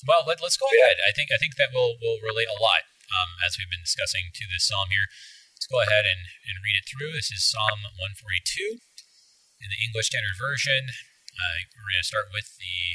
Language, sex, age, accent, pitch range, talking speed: English, male, 30-49, American, 100-135 Hz, 220 wpm